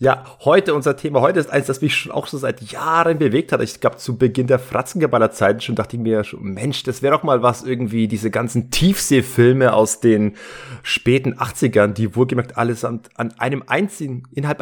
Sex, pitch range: male, 110-140 Hz